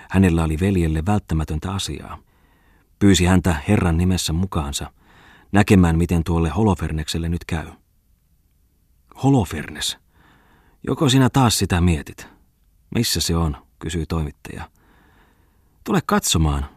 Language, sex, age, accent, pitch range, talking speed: Finnish, male, 30-49, native, 80-100 Hz, 105 wpm